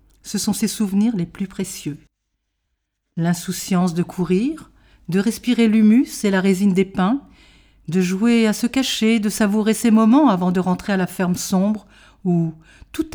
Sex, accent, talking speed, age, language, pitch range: female, French, 165 wpm, 50-69, French, 170-225 Hz